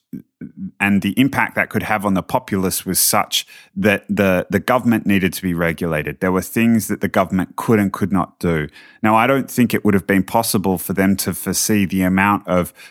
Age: 30-49